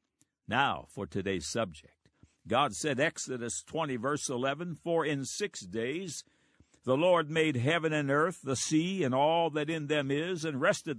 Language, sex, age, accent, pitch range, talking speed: English, male, 60-79, American, 120-155 Hz, 165 wpm